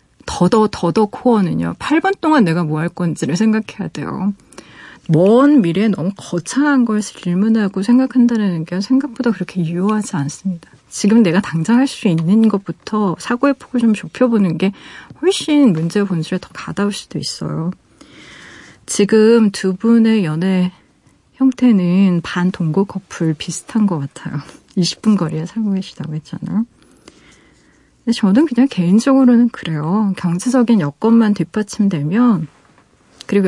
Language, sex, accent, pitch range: Korean, female, native, 180-240 Hz